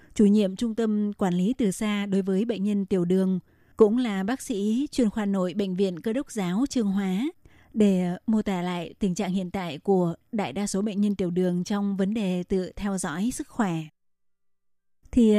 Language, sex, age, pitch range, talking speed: Vietnamese, female, 20-39, 195-225 Hz, 205 wpm